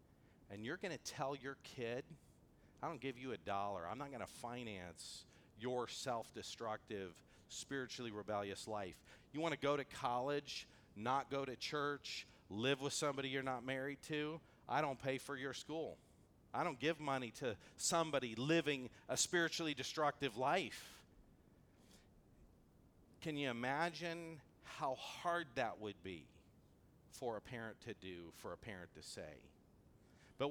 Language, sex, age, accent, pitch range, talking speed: English, male, 40-59, American, 105-145 Hz, 150 wpm